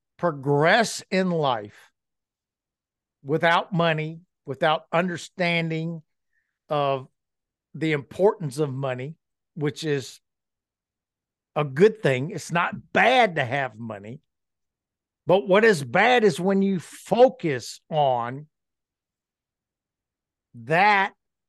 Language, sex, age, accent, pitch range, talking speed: English, male, 60-79, American, 130-180 Hz, 90 wpm